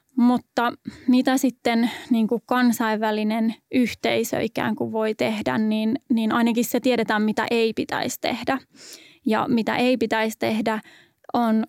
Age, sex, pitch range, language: 20-39, female, 225-255 Hz, Finnish